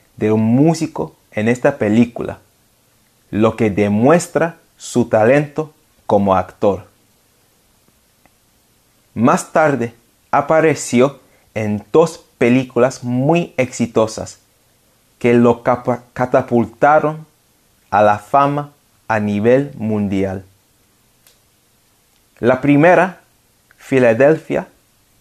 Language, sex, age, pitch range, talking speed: Spanish, male, 30-49, 110-145 Hz, 80 wpm